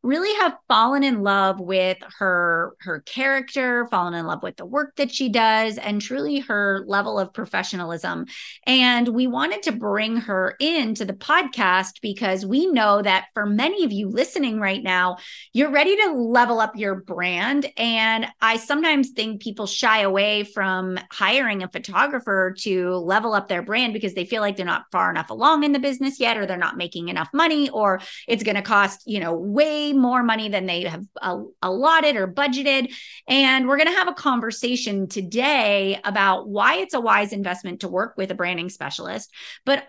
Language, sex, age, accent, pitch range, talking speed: English, female, 30-49, American, 195-270 Hz, 185 wpm